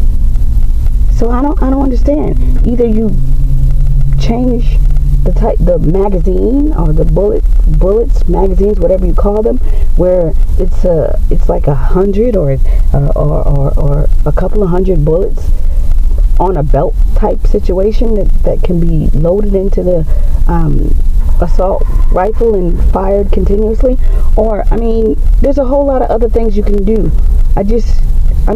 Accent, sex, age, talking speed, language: American, female, 40-59, 155 wpm, English